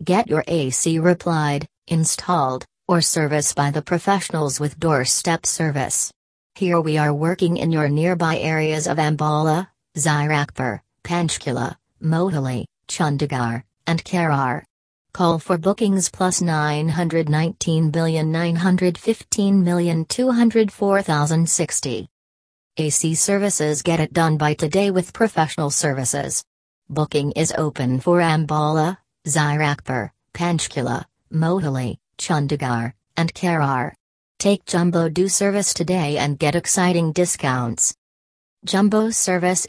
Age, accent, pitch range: 40-59, American, 150-180 Hz